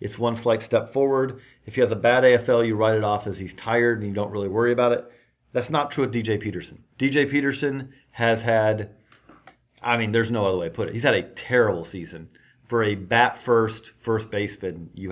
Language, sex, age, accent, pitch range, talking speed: English, male, 40-59, American, 105-125 Hz, 220 wpm